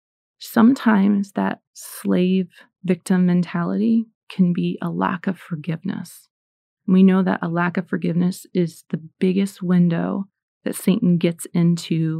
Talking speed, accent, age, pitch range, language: 130 wpm, American, 30-49, 170-200 Hz, English